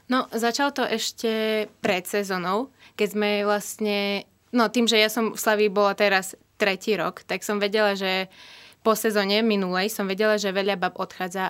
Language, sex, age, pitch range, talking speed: Slovak, female, 20-39, 190-220 Hz, 170 wpm